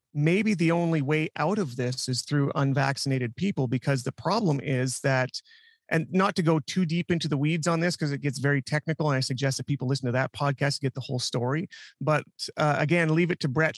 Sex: male